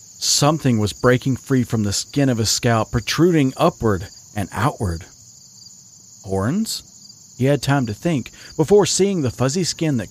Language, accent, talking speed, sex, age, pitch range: English, American, 155 wpm, male, 40-59, 110-145 Hz